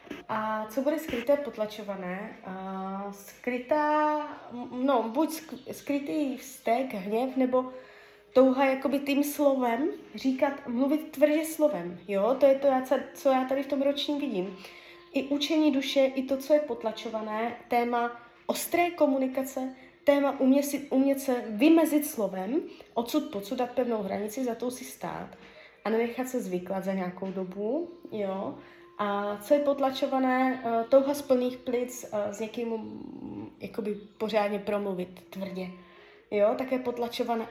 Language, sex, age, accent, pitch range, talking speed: Czech, female, 30-49, native, 215-280 Hz, 135 wpm